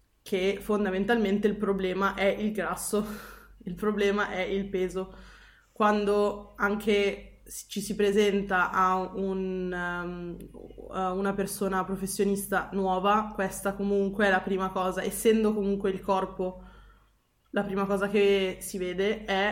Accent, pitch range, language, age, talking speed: native, 190-210 Hz, Italian, 20-39, 125 wpm